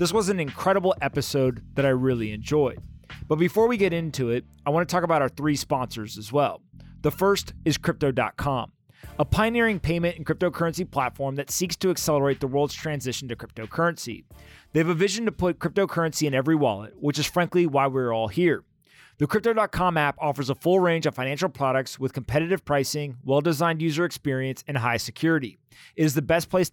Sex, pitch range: male, 135-170 Hz